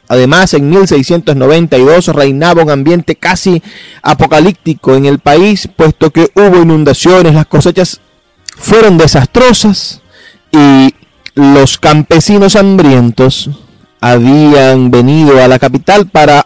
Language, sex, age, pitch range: Spanish, male, 30-49, 130-165 Hz